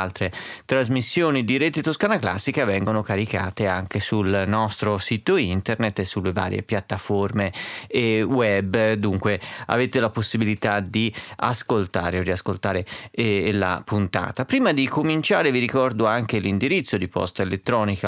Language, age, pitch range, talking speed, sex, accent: Italian, 30-49, 95-120 Hz, 130 wpm, male, native